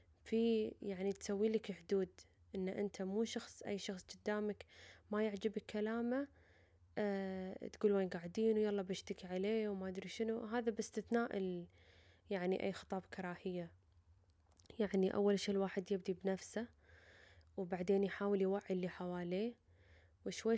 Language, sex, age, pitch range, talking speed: Arabic, female, 10-29, 185-210 Hz, 125 wpm